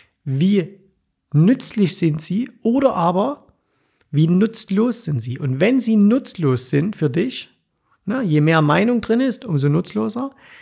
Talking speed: 135 wpm